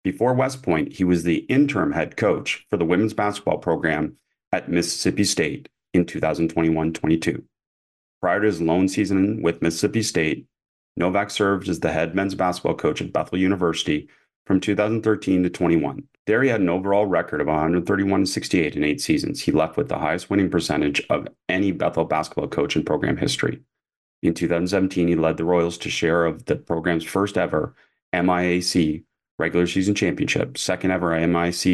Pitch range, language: 85-100 Hz, English